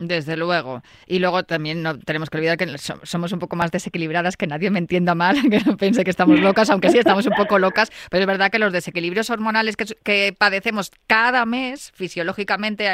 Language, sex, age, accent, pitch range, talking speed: Spanish, female, 20-39, Spanish, 175-210 Hz, 215 wpm